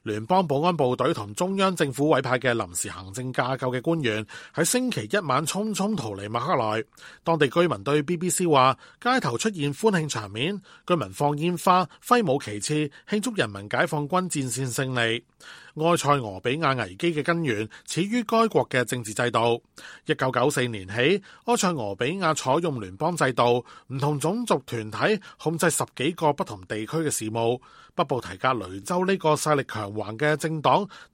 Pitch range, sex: 120-165 Hz, male